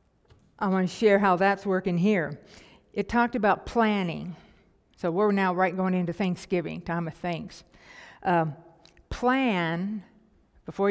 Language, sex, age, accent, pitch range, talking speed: English, female, 60-79, American, 170-215 Hz, 130 wpm